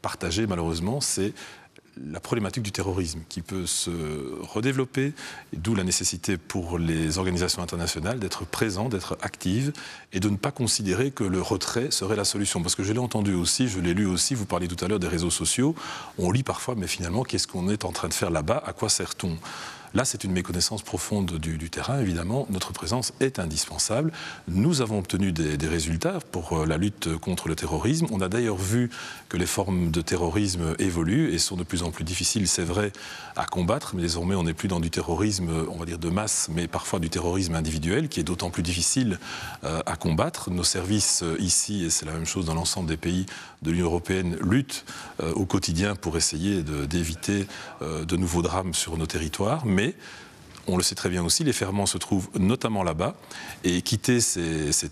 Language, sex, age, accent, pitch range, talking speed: French, male, 40-59, French, 85-105 Hz, 200 wpm